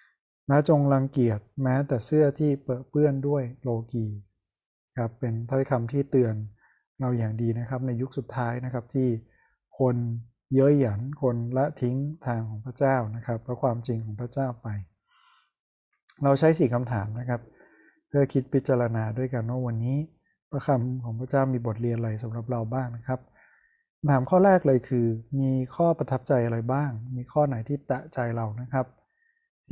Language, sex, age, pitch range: Thai, male, 20-39, 115-140 Hz